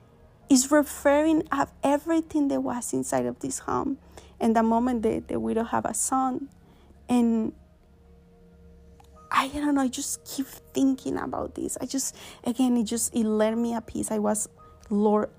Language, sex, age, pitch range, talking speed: English, female, 30-49, 210-255 Hz, 160 wpm